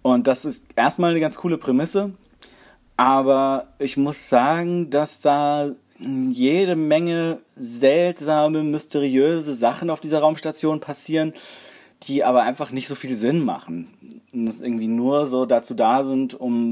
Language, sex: German, male